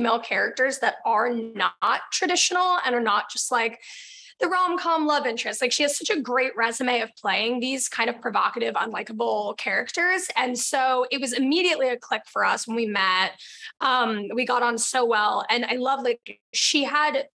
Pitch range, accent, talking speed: 230-285 Hz, American, 185 wpm